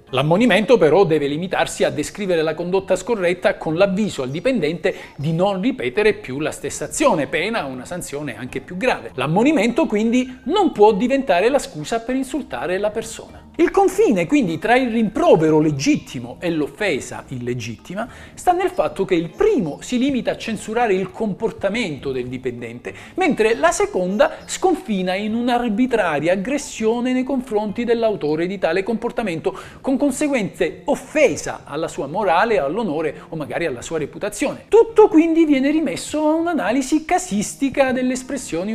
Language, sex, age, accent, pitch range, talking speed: Italian, male, 40-59, native, 165-265 Hz, 145 wpm